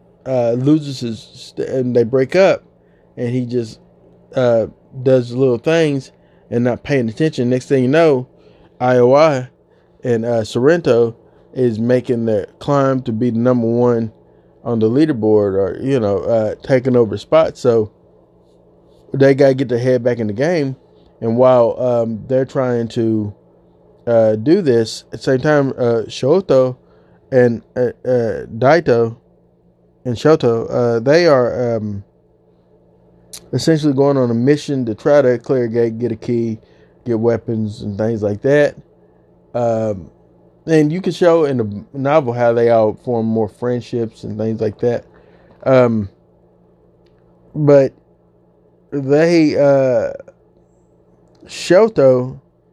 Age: 20-39